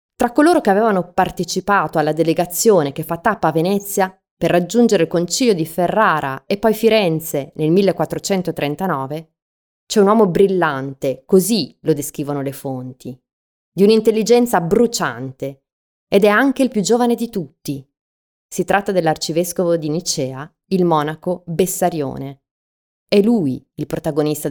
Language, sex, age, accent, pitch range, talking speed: Italian, female, 20-39, native, 140-195 Hz, 135 wpm